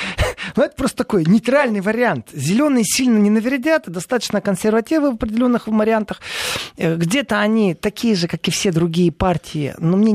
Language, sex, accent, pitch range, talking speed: Russian, male, native, 160-225 Hz, 155 wpm